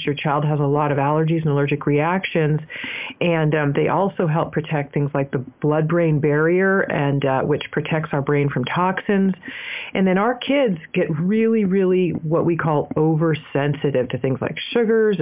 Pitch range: 145-180 Hz